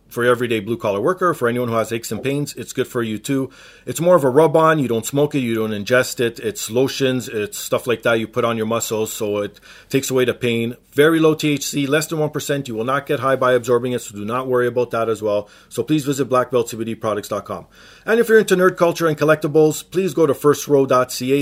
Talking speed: 240 wpm